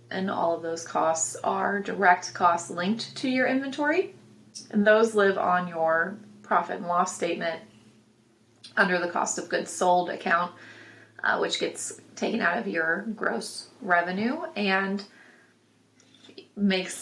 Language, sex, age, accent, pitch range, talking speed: English, female, 30-49, American, 180-225 Hz, 140 wpm